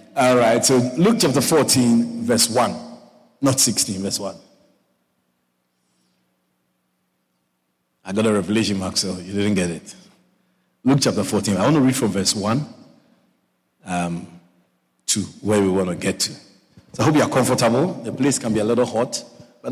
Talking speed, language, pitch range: 160 wpm, English, 105-145 Hz